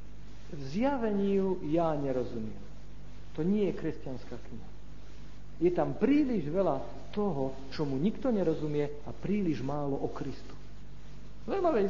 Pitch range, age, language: 135-220 Hz, 50-69, Slovak